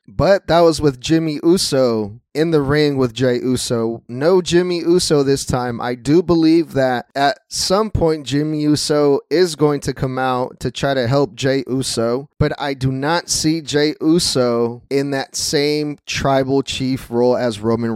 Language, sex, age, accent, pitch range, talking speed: English, male, 20-39, American, 125-155 Hz, 175 wpm